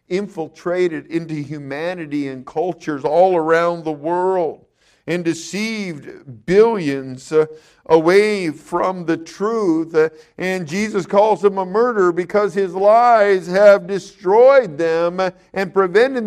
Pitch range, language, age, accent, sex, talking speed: 140-210 Hz, English, 50-69, American, male, 110 wpm